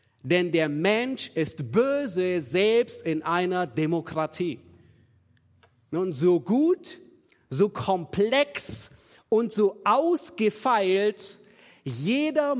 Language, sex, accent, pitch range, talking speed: German, male, German, 155-215 Hz, 85 wpm